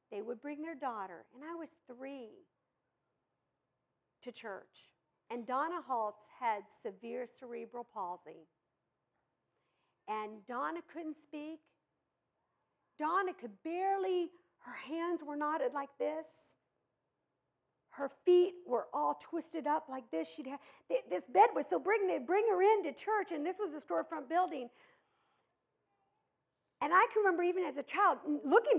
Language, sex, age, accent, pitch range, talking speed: English, female, 50-69, American, 275-390 Hz, 140 wpm